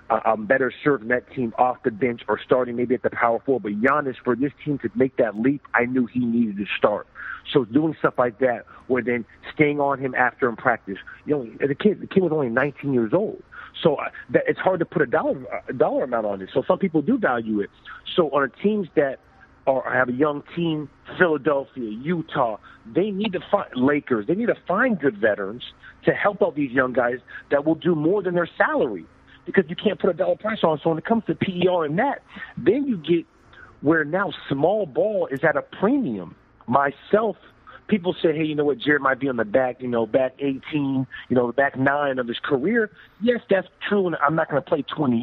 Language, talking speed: English, 230 wpm